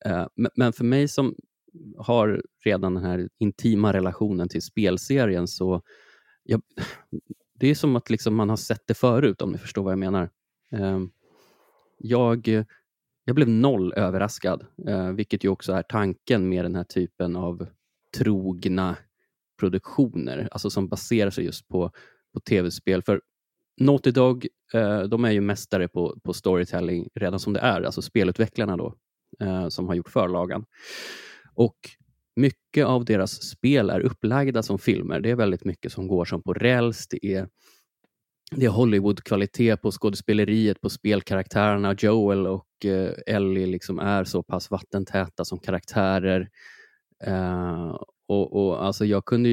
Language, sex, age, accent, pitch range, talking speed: Swedish, male, 20-39, native, 95-115 Hz, 145 wpm